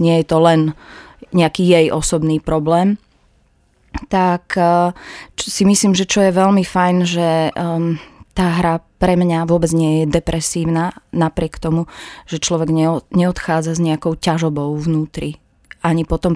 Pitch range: 160-185 Hz